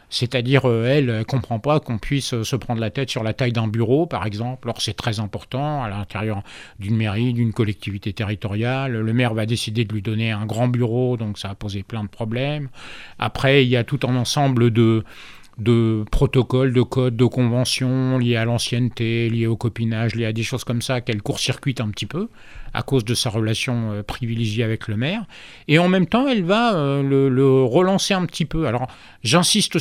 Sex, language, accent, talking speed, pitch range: male, English, French, 205 wpm, 115-145 Hz